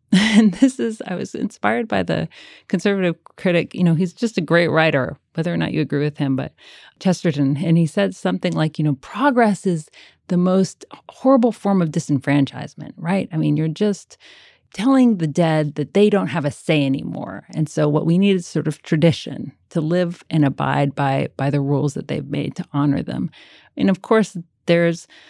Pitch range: 145-180 Hz